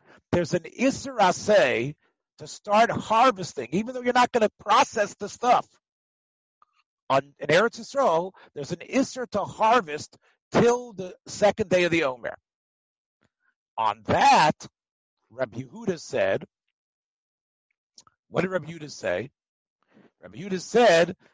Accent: American